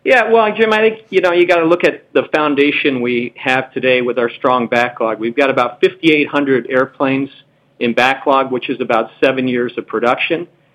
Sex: male